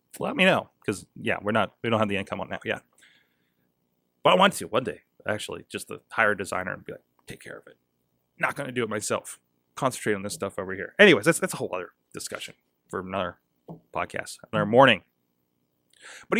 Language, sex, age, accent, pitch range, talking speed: English, male, 30-49, American, 100-155 Hz, 215 wpm